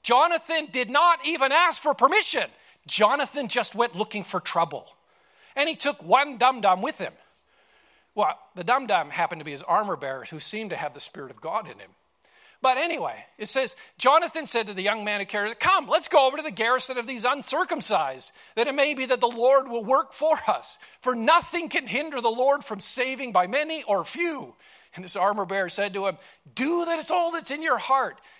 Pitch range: 175-285 Hz